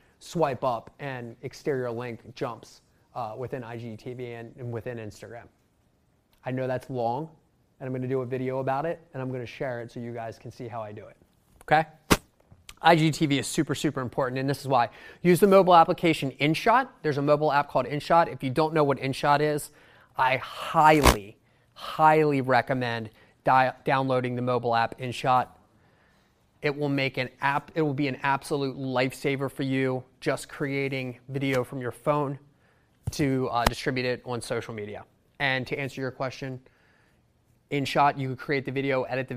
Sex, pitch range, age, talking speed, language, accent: male, 120-145 Hz, 30-49, 180 wpm, English, American